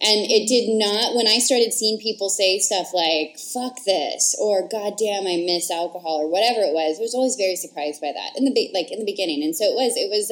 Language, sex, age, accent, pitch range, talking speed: English, female, 20-39, American, 180-270 Hz, 255 wpm